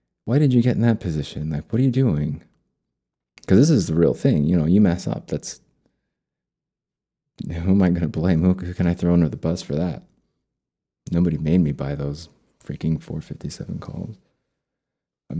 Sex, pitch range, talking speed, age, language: male, 75-95 Hz, 190 wpm, 30-49, English